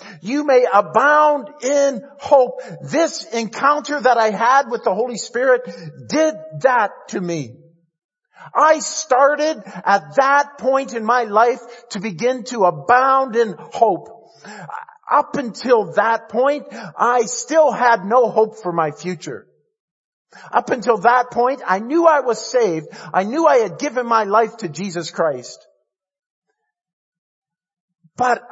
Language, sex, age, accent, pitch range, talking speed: English, male, 50-69, American, 185-275 Hz, 135 wpm